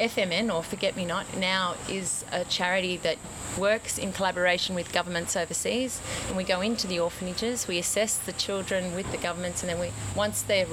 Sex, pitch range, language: female, 170-200 Hz, English